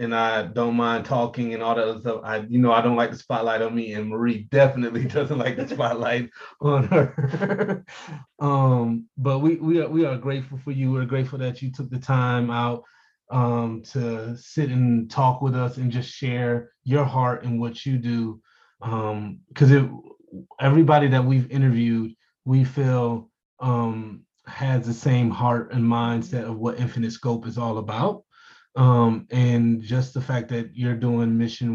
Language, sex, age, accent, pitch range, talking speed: English, male, 30-49, American, 115-130 Hz, 170 wpm